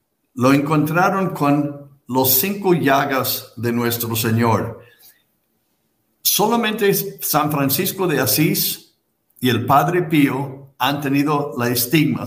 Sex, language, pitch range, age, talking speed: male, Spanish, 120-175 Hz, 60-79, 110 wpm